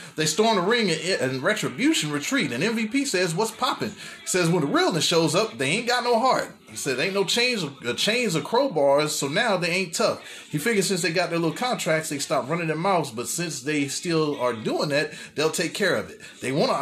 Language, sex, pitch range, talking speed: English, male, 135-195 Hz, 235 wpm